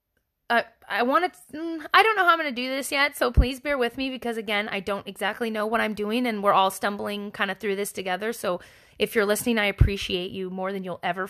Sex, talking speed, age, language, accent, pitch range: female, 250 wpm, 20-39, English, American, 195-240 Hz